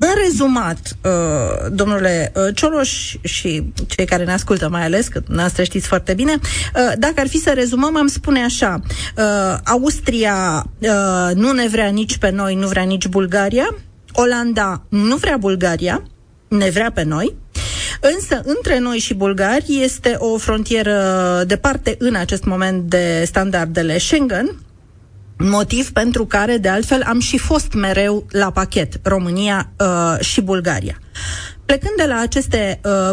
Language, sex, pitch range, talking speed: Romanian, female, 180-245 Hz, 140 wpm